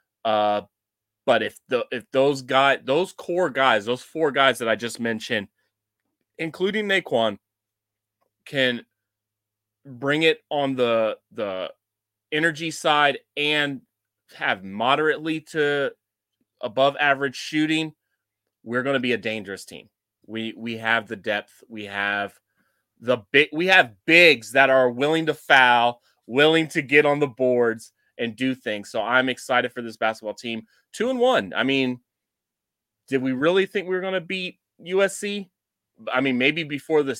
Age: 30-49